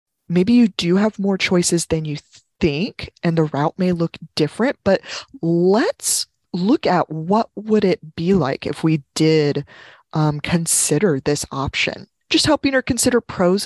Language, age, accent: English, 20-39, American